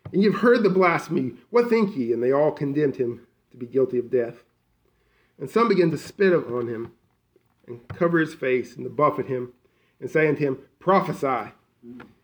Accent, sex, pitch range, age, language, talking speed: American, male, 130-170 Hz, 40-59, English, 190 wpm